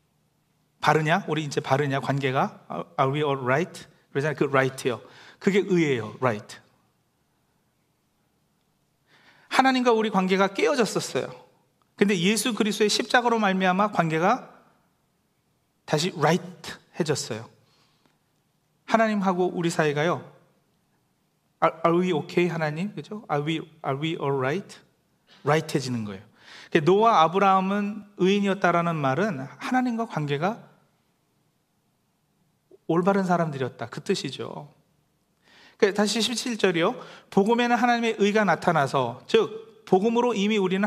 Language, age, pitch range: Korean, 40-59, 155-210 Hz